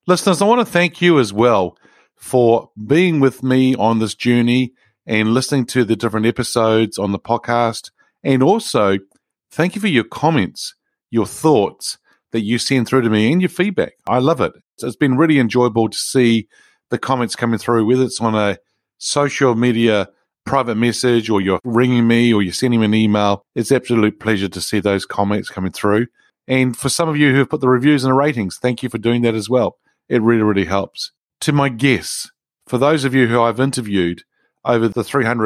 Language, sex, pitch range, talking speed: English, male, 105-135 Hz, 205 wpm